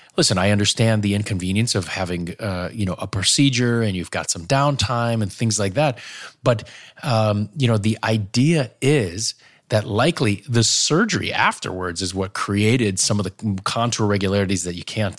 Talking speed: 175 wpm